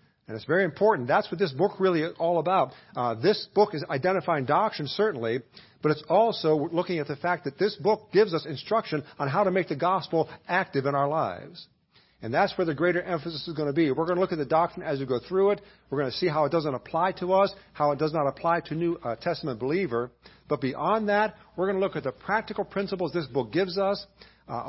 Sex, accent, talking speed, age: male, American, 240 wpm, 50-69